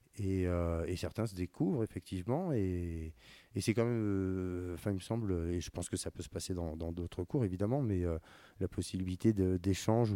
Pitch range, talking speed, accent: 85-105 Hz, 205 wpm, French